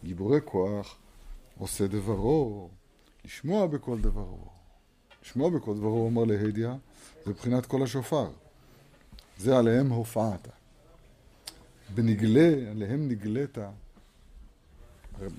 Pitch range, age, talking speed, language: 95-130 Hz, 50-69, 90 wpm, Hebrew